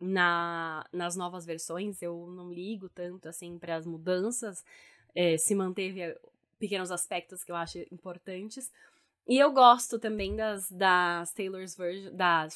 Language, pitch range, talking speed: Portuguese, 180-215 Hz, 140 wpm